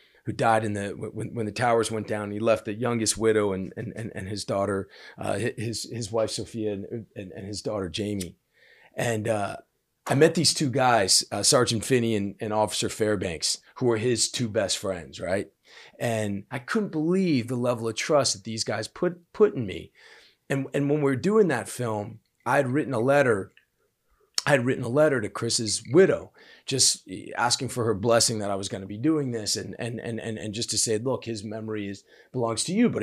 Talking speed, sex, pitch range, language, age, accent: 215 wpm, male, 105-130 Hz, English, 40-59, American